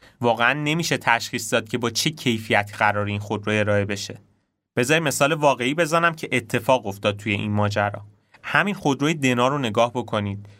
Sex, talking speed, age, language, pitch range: male, 165 wpm, 30-49, Persian, 110-135 Hz